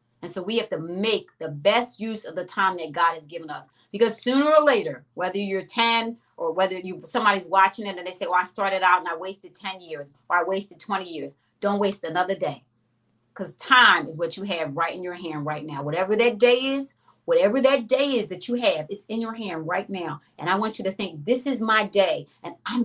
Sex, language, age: female, English, 30-49